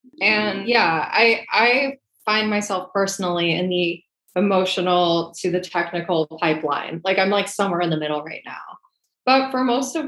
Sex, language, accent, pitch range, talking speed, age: female, English, American, 175-215 Hz, 160 wpm, 20-39